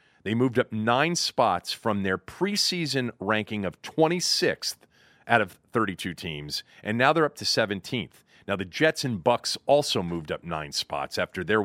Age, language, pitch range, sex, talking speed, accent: 40-59, English, 110-150 Hz, male, 170 wpm, American